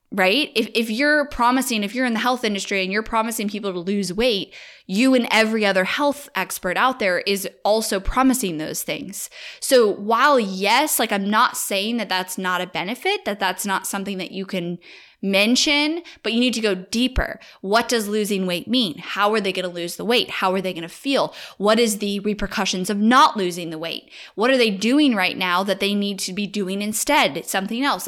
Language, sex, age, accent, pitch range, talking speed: English, female, 10-29, American, 190-235 Hz, 215 wpm